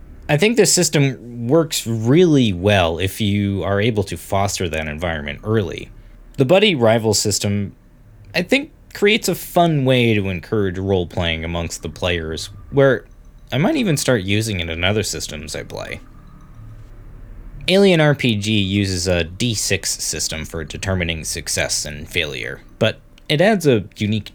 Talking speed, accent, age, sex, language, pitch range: 150 wpm, American, 20-39, male, English, 95-140 Hz